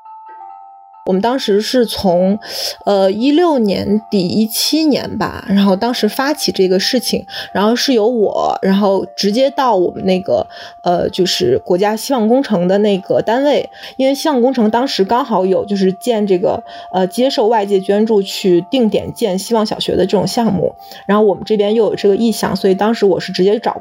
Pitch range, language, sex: 185-235 Hz, Chinese, female